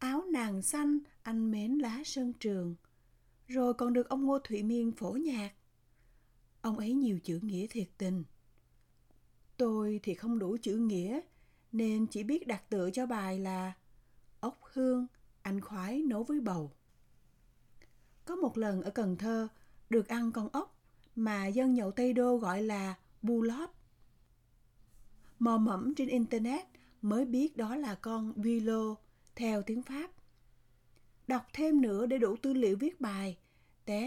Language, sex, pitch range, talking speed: Vietnamese, female, 200-255 Hz, 155 wpm